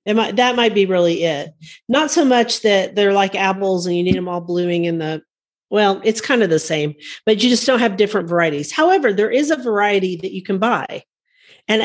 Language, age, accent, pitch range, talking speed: English, 40-59, American, 180-230 Hz, 230 wpm